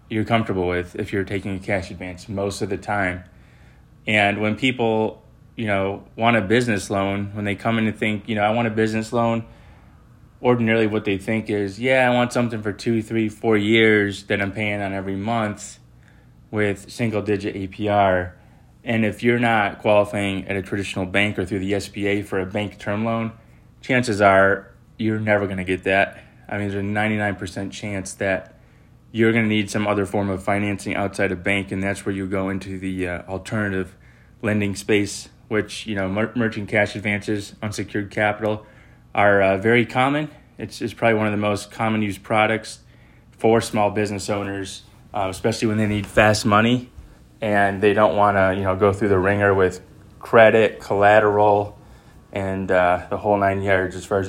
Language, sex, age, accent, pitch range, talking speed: English, male, 20-39, American, 100-110 Hz, 190 wpm